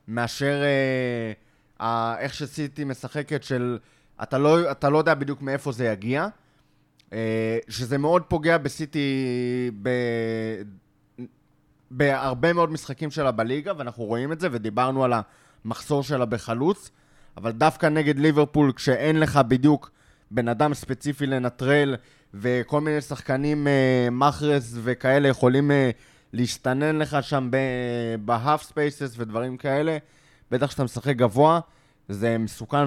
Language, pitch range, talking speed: Hebrew, 120-145 Hz, 125 wpm